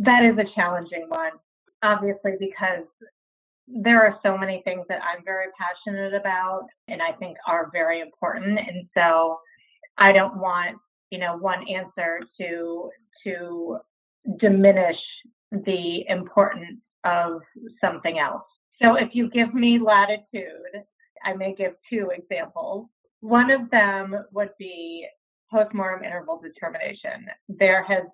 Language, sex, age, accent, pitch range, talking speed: English, female, 30-49, American, 180-215 Hz, 130 wpm